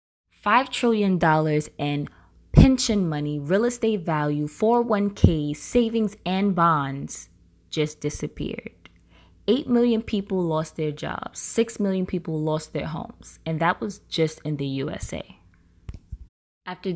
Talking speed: 115 wpm